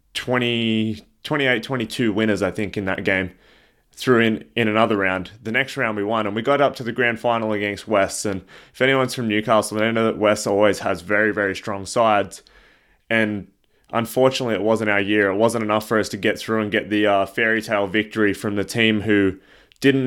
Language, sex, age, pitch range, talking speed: English, male, 20-39, 105-125 Hz, 205 wpm